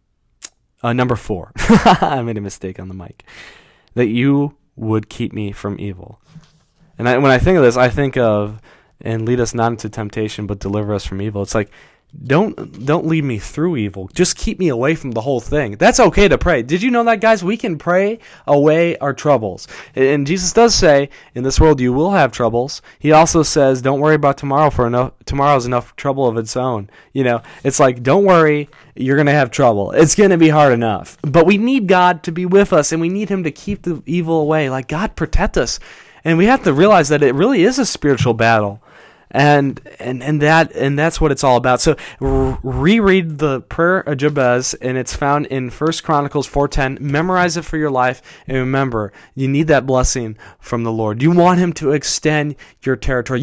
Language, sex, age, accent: English, male, 20-39, American